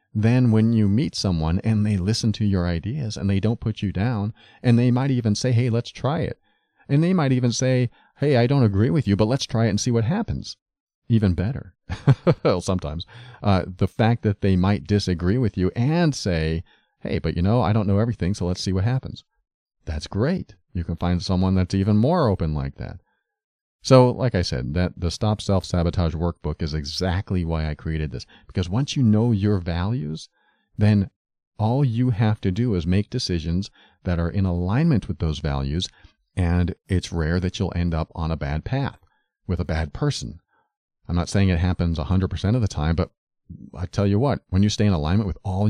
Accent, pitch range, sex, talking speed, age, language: American, 85-115 Hz, male, 205 wpm, 40-59, English